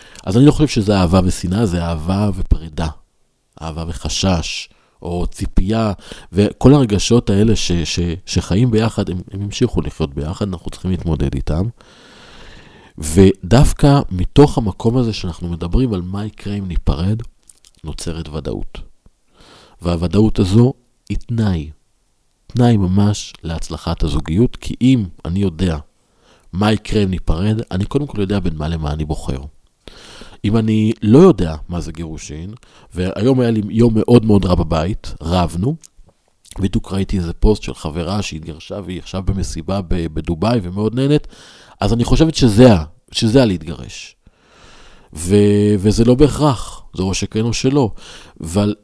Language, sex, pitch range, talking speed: Hebrew, male, 85-110 Hz, 140 wpm